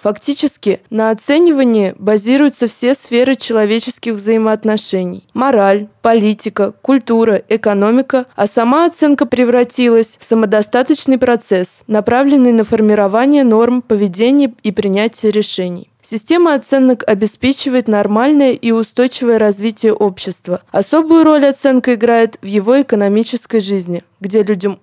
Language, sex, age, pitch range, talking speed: Russian, female, 20-39, 210-255 Hz, 110 wpm